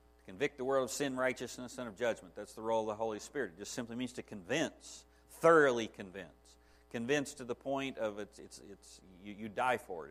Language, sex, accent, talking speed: English, male, American, 220 wpm